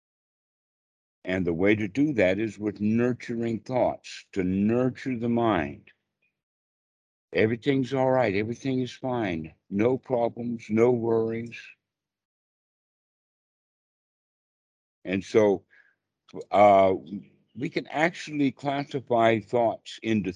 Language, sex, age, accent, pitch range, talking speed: English, male, 60-79, American, 105-125 Hz, 95 wpm